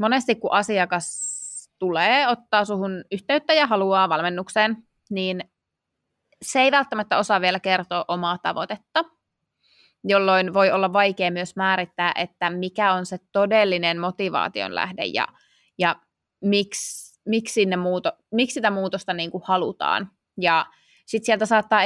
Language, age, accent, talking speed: Finnish, 20-39, native, 130 wpm